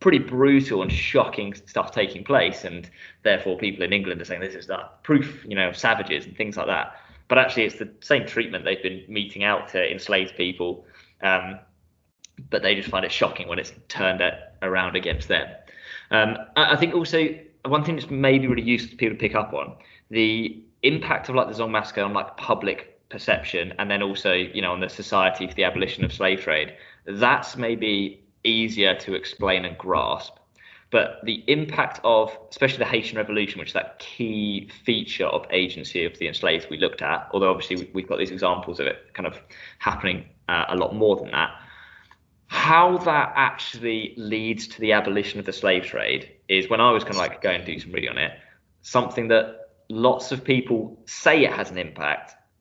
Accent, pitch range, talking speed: British, 95-120 Hz, 195 wpm